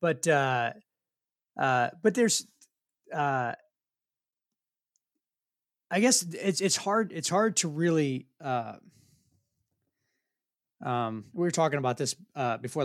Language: English